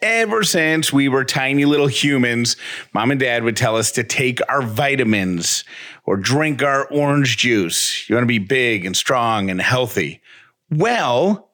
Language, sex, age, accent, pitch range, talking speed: English, male, 30-49, American, 110-135 Hz, 165 wpm